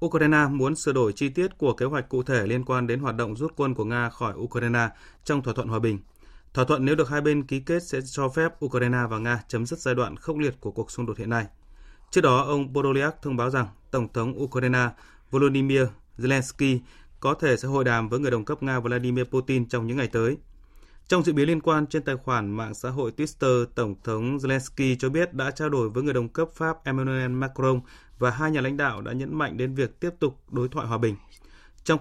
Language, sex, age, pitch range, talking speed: Vietnamese, male, 20-39, 120-140 Hz, 235 wpm